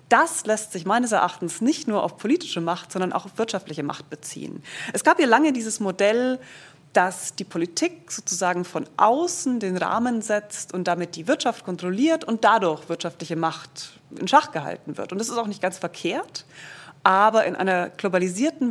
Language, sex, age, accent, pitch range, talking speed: German, female, 30-49, German, 180-235 Hz, 175 wpm